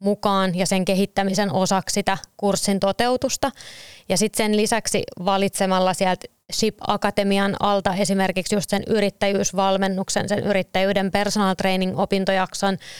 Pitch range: 190-205 Hz